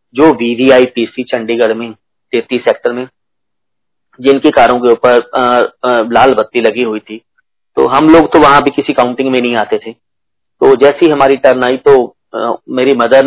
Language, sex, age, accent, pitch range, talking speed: Hindi, male, 40-59, native, 125-185 Hz, 170 wpm